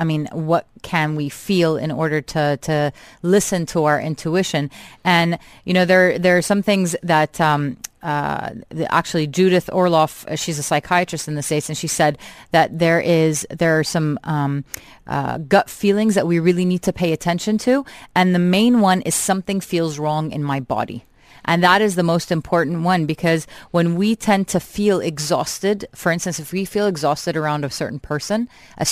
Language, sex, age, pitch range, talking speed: English, female, 30-49, 150-180 Hz, 190 wpm